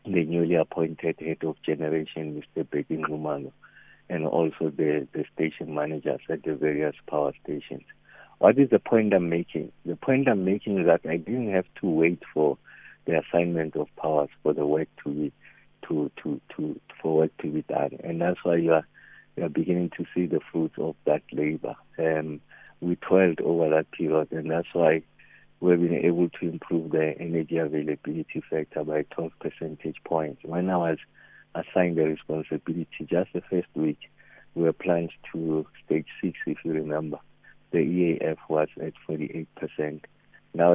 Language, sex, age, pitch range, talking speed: English, male, 60-79, 75-85 Hz, 160 wpm